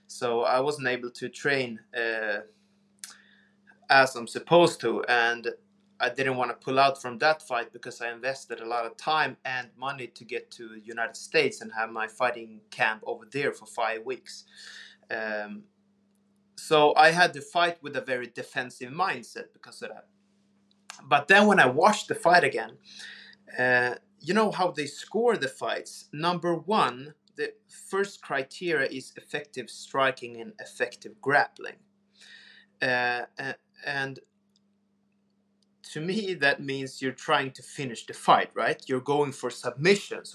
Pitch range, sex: 125-205 Hz, male